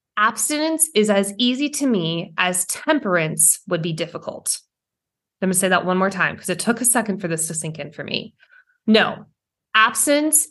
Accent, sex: American, female